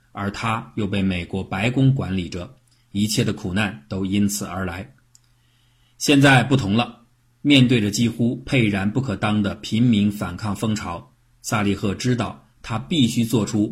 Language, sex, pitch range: Chinese, male, 100-125 Hz